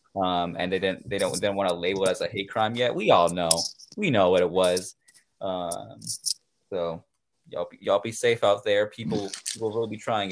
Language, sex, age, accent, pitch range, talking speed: English, male, 20-39, American, 90-150 Hz, 225 wpm